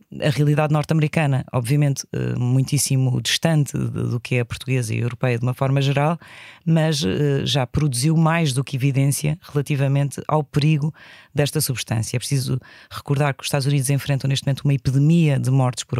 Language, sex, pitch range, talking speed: Portuguese, female, 135-155 Hz, 170 wpm